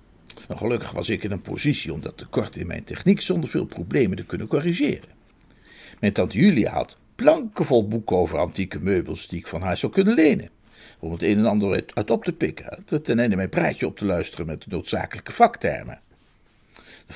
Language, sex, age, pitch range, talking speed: Dutch, male, 60-79, 95-160 Hz, 195 wpm